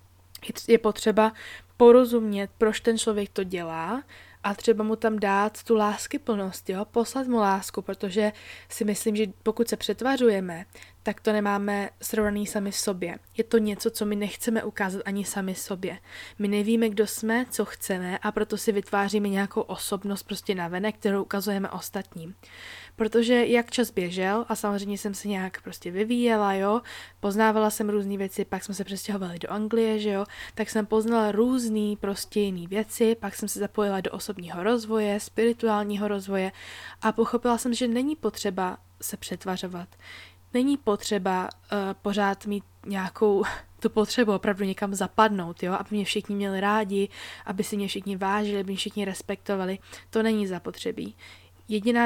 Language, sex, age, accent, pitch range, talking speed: English, female, 20-39, Czech, 195-220 Hz, 160 wpm